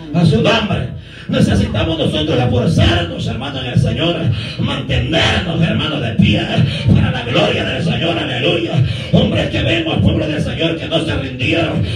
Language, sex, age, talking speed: Spanish, male, 50-69, 155 wpm